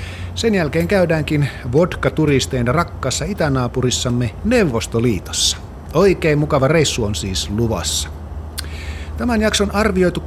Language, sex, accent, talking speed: Finnish, male, native, 95 wpm